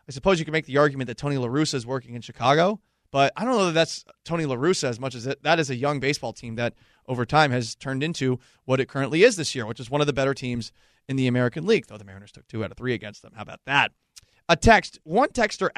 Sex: male